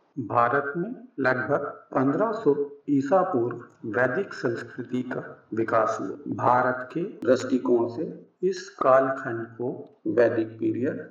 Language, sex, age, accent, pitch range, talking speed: Hindi, male, 50-69, native, 120-155 Hz, 110 wpm